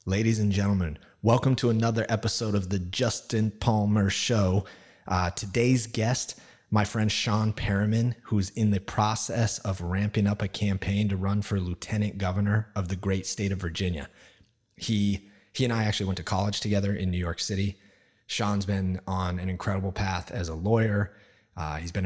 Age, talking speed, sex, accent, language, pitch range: 30-49, 175 wpm, male, American, English, 90-105 Hz